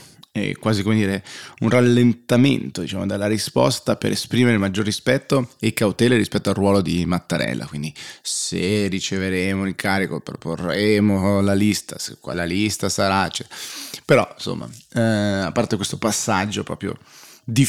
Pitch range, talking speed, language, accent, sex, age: 100-120 Hz, 140 wpm, Italian, native, male, 30-49